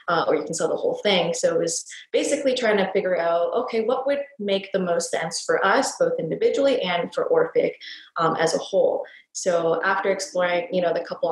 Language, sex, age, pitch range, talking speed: English, female, 20-39, 175-260 Hz, 215 wpm